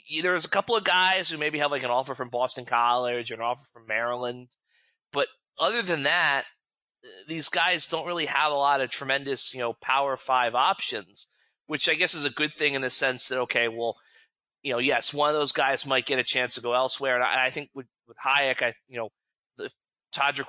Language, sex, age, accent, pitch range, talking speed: English, male, 30-49, American, 120-150 Hz, 220 wpm